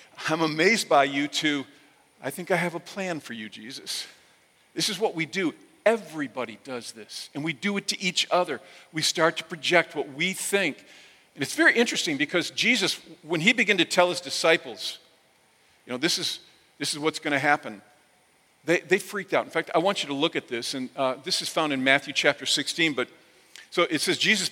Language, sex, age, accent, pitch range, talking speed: English, male, 50-69, American, 145-185 Hz, 210 wpm